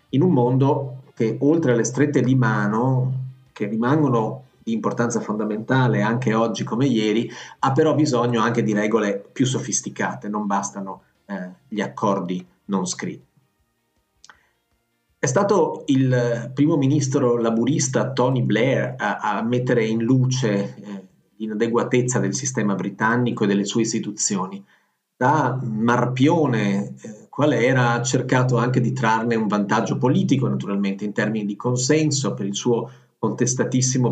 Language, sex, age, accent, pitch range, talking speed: Italian, male, 40-59, native, 110-135 Hz, 135 wpm